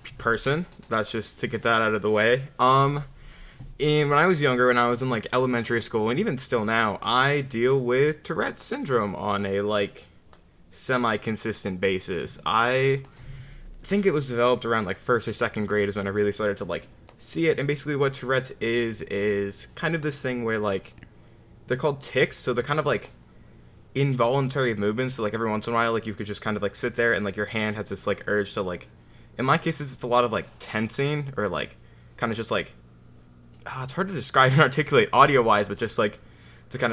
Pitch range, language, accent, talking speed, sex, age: 105-135 Hz, English, American, 215 wpm, male, 20-39